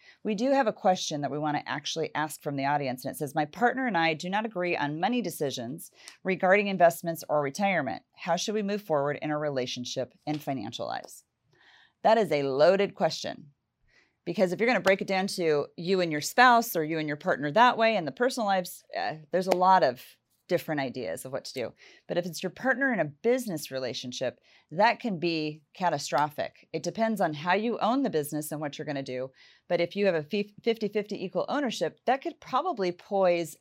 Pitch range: 150-200 Hz